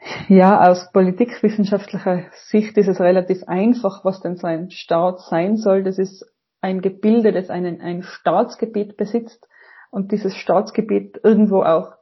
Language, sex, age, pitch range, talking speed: German, female, 30-49, 185-220 Hz, 145 wpm